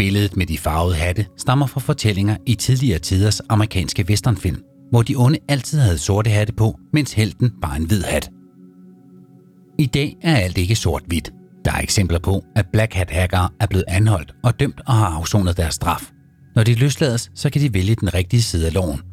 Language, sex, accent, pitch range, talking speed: Danish, male, native, 90-120 Hz, 190 wpm